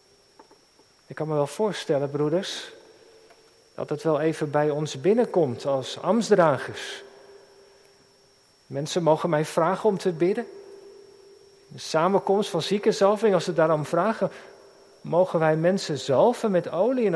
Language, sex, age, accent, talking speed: Dutch, male, 50-69, Dutch, 130 wpm